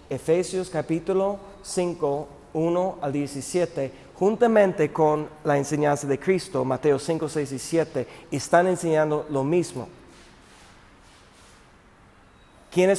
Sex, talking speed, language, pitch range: male, 100 wpm, Spanish, 130-175 Hz